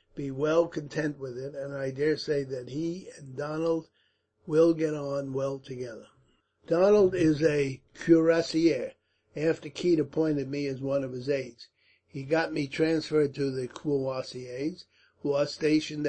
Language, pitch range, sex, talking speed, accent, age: English, 130-155 Hz, male, 155 wpm, American, 50-69